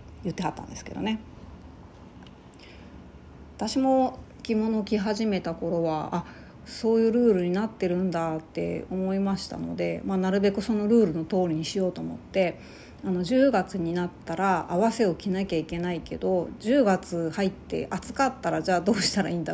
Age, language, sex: 40-59, Japanese, female